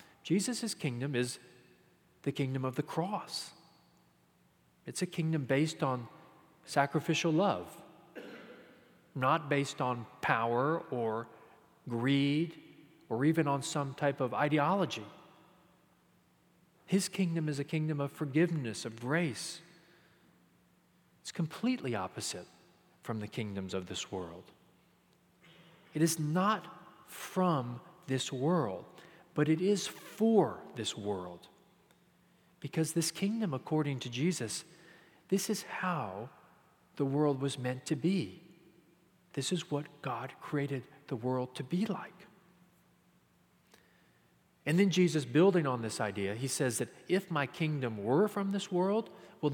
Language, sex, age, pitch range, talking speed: English, male, 40-59, 130-175 Hz, 120 wpm